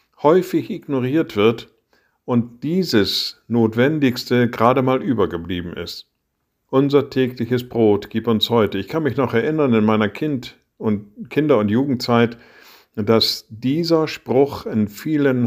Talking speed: 130 wpm